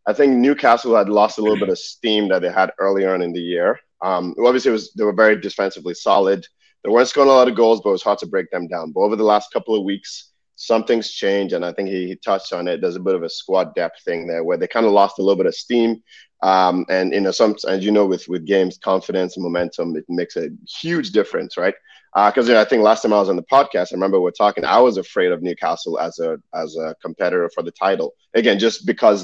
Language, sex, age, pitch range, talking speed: English, male, 20-39, 95-135 Hz, 260 wpm